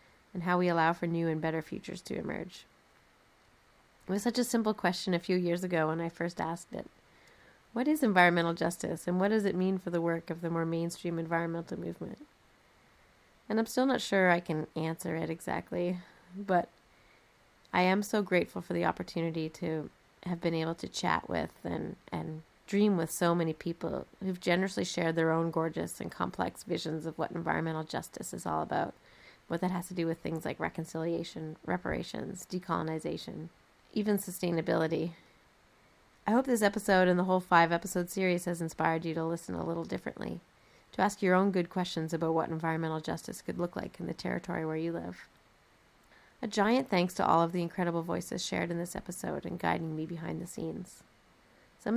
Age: 30-49